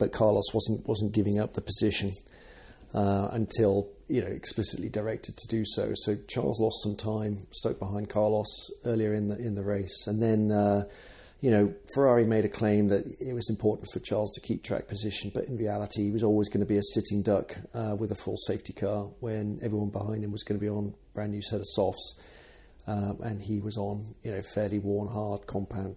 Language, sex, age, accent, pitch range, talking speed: English, male, 40-59, British, 100-115 Hz, 215 wpm